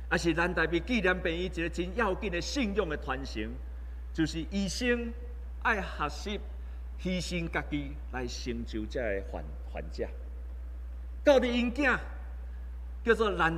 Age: 50-69